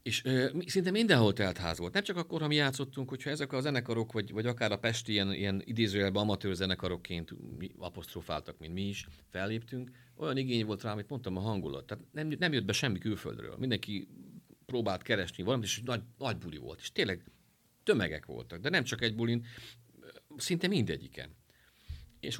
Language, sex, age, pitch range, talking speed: Hungarian, male, 50-69, 90-120 Hz, 180 wpm